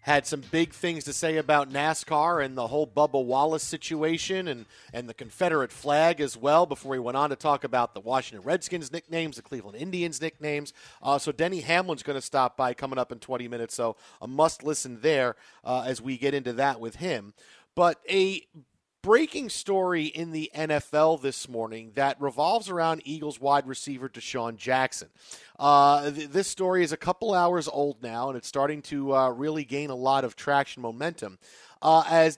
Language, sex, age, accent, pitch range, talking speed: English, male, 40-59, American, 135-170 Hz, 190 wpm